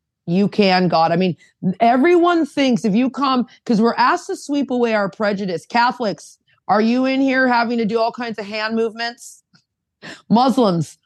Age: 40-59